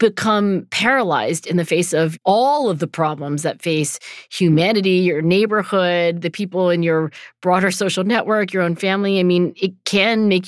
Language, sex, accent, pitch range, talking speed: English, female, American, 165-225 Hz, 170 wpm